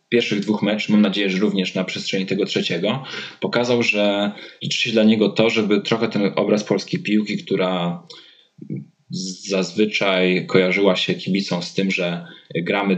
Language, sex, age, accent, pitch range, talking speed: Polish, male, 20-39, native, 95-110 Hz, 155 wpm